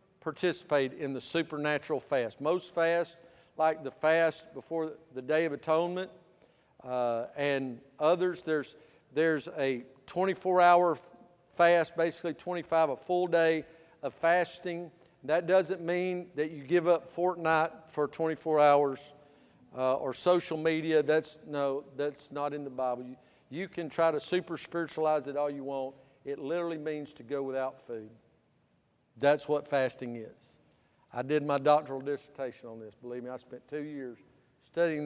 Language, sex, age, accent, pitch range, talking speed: English, male, 50-69, American, 135-165 Hz, 150 wpm